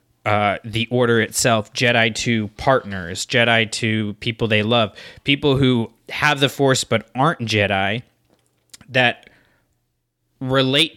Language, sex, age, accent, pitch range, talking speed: English, male, 20-39, American, 105-130 Hz, 120 wpm